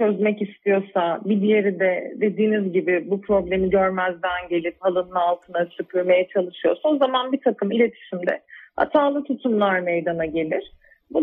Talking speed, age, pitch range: 135 wpm, 40-59, 195-245 Hz